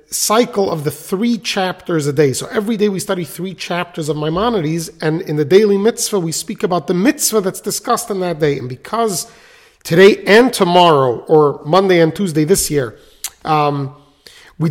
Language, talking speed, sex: English, 180 wpm, male